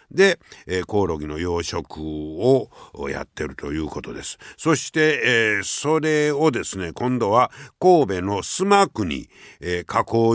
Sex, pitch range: male, 95-150 Hz